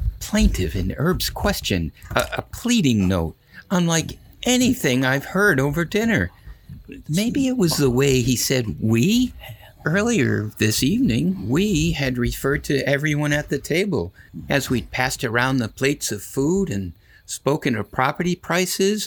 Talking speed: 145 wpm